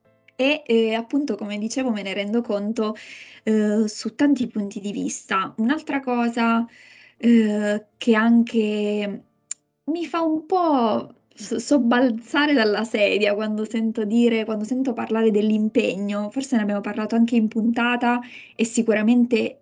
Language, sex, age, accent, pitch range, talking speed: Italian, female, 20-39, native, 210-235 Hz, 125 wpm